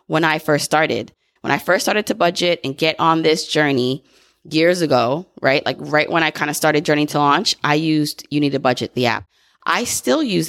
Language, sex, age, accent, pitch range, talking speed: English, female, 20-39, American, 140-170 Hz, 225 wpm